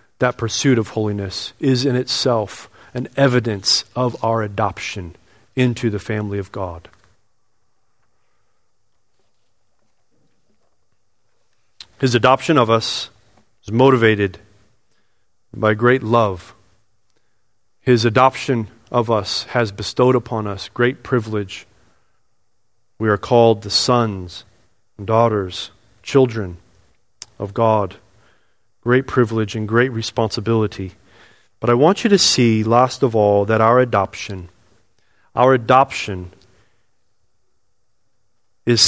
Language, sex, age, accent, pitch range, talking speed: English, male, 40-59, American, 105-125 Hz, 100 wpm